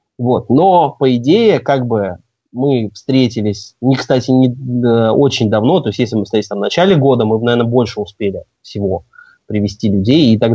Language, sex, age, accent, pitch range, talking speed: Russian, male, 20-39, native, 105-135 Hz, 170 wpm